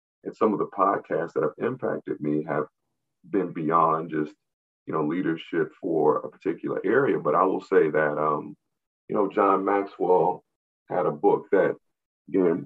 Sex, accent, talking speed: male, American, 165 wpm